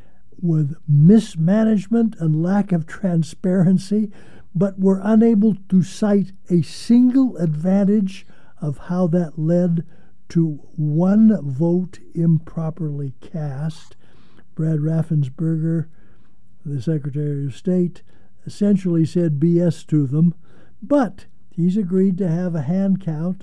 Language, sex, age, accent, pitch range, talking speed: English, male, 60-79, American, 150-185 Hz, 110 wpm